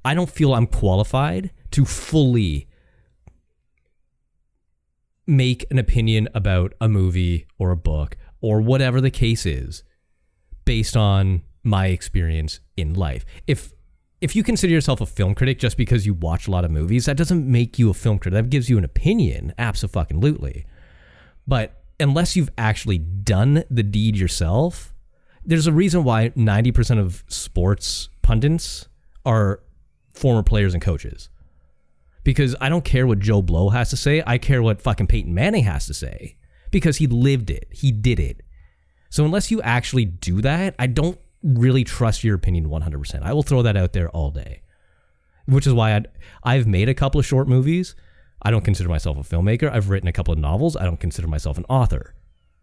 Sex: male